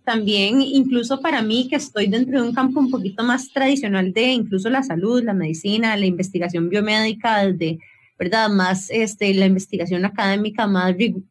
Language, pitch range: English, 195-250 Hz